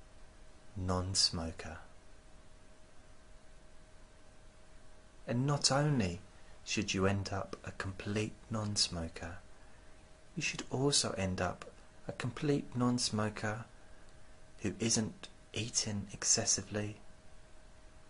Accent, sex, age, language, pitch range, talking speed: British, male, 30-49, English, 90-110 Hz, 75 wpm